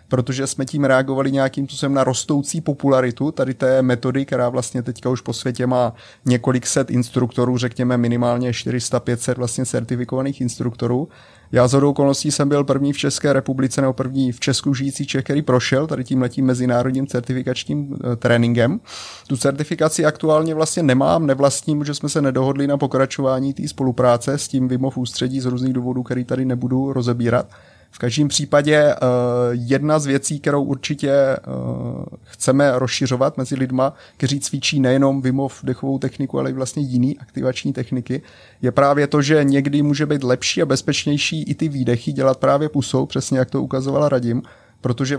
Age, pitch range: 30-49, 125-140 Hz